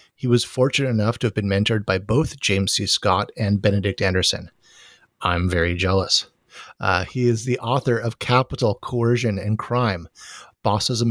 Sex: male